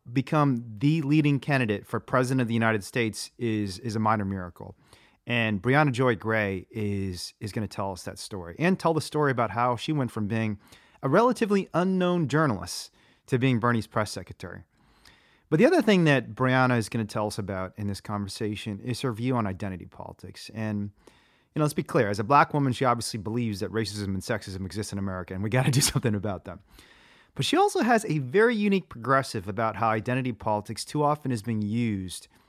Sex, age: male, 30-49